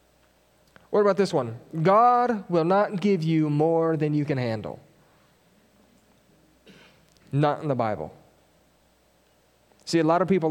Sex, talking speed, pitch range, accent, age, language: male, 130 wpm, 145-180 Hz, American, 30-49, English